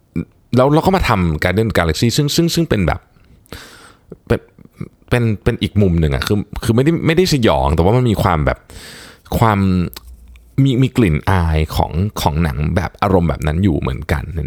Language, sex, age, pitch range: Thai, male, 20-39, 85-115 Hz